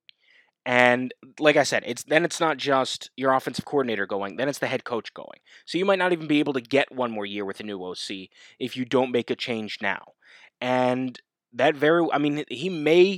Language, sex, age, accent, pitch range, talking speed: English, male, 20-39, American, 120-160 Hz, 225 wpm